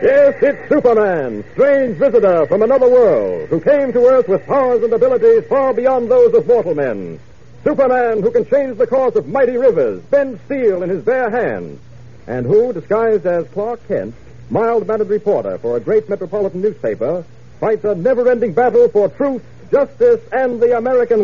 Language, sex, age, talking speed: English, male, 60-79, 170 wpm